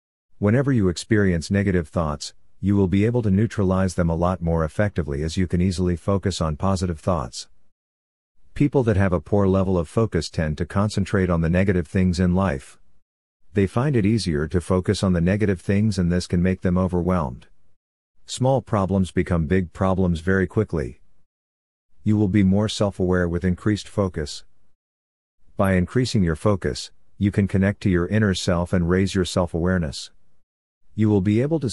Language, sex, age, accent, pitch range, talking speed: English, male, 50-69, American, 85-100 Hz, 180 wpm